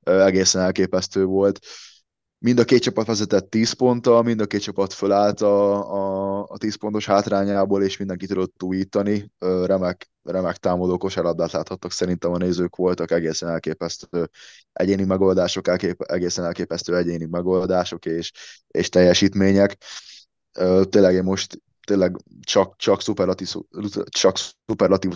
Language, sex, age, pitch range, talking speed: Hungarian, male, 20-39, 90-95 Hz, 125 wpm